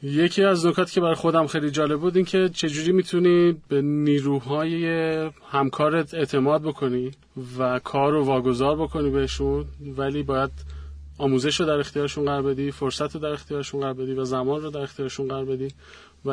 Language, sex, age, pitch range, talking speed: Persian, male, 30-49, 130-150 Hz, 170 wpm